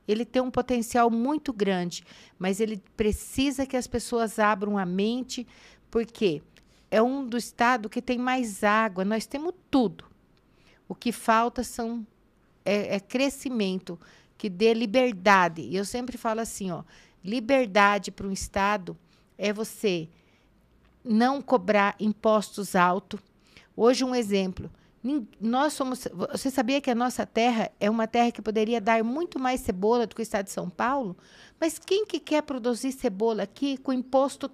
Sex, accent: female, Brazilian